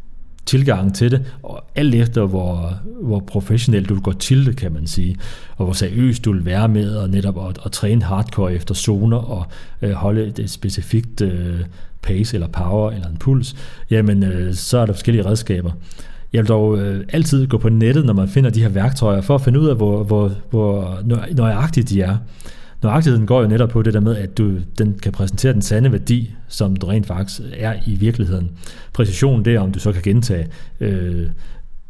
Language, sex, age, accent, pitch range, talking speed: Danish, male, 30-49, native, 95-115 Hz, 190 wpm